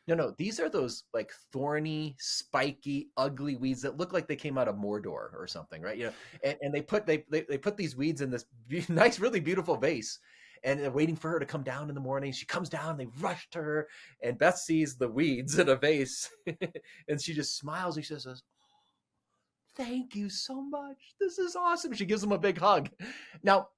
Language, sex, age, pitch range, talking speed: English, male, 30-49, 120-170 Hz, 220 wpm